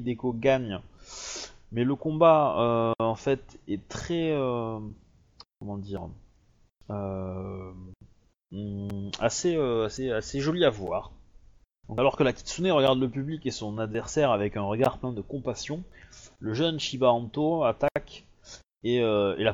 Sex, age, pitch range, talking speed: male, 20-39, 100-135 Hz, 140 wpm